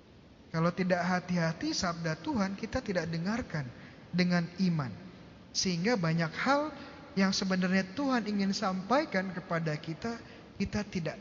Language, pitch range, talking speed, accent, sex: Indonesian, 175-230 Hz, 120 wpm, native, male